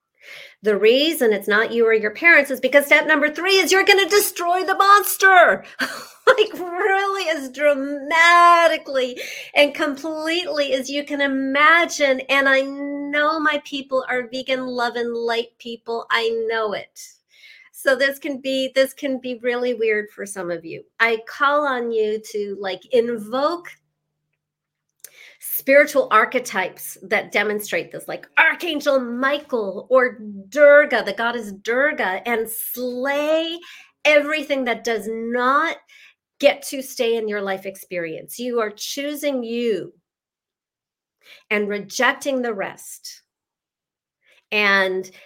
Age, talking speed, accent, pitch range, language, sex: 40-59, 130 wpm, American, 220-290 Hz, English, female